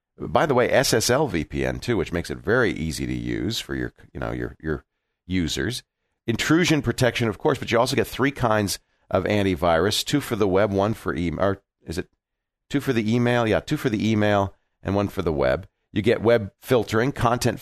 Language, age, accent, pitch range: English, 40-59, American, 95-130 Hz